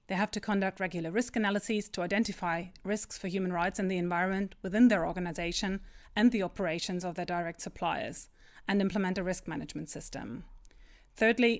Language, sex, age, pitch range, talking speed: English, female, 30-49, 185-215 Hz, 170 wpm